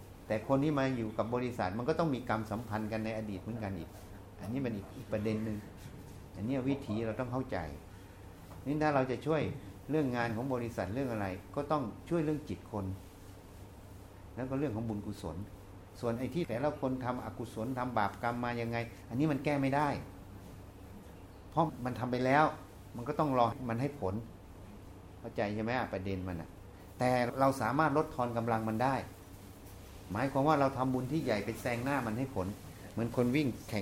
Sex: male